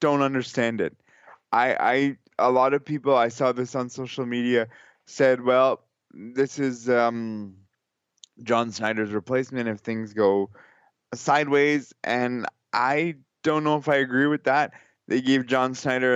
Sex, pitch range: male, 115-135 Hz